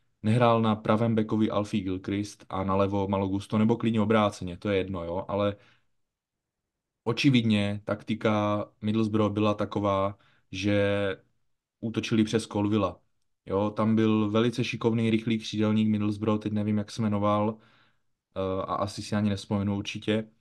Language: Czech